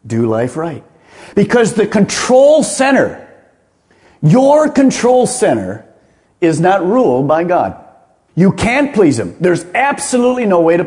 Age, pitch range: 50-69, 175-245 Hz